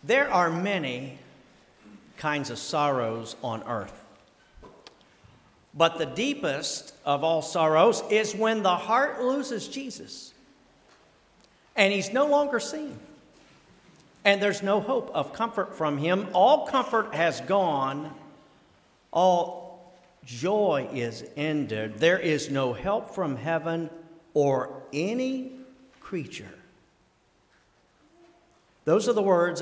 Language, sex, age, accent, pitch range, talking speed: English, male, 50-69, American, 140-205 Hz, 110 wpm